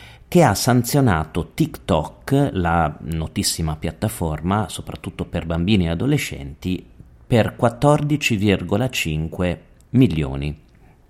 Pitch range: 85-115 Hz